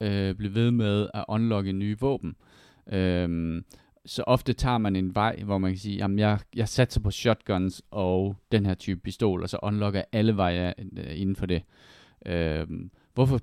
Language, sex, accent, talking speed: Danish, male, native, 180 wpm